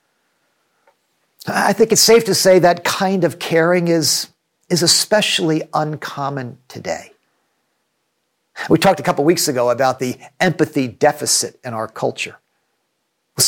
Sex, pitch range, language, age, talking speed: male, 145-190 Hz, English, 50-69, 130 wpm